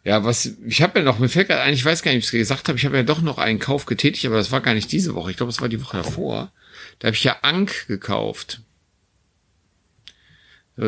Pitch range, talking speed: 100-130 Hz, 255 wpm